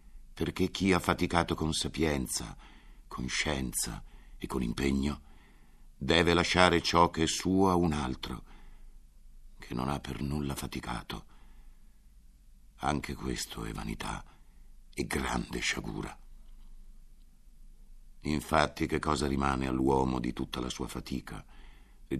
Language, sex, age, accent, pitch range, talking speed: Italian, male, 60-79, native, 65-80 Hz, 120 wpm